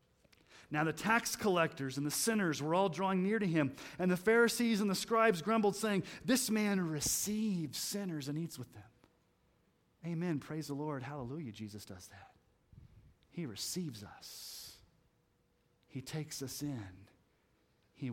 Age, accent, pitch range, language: 30-49, American, 120-180 Hz, English